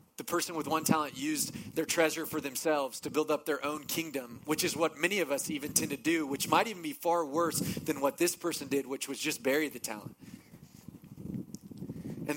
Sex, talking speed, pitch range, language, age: male, 215 wpm, 120-150 Hz, English, 30-49